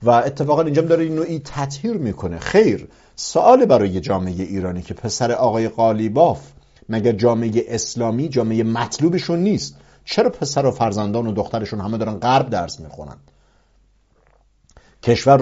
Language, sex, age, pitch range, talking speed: English, male, 50-69, 105-140 Hz, 140 wpm